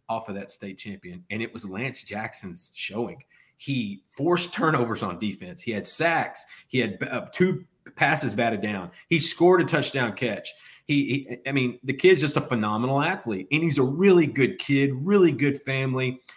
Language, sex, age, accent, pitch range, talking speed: English, male, 30-49, American, 120-160 Hz, 180 wpm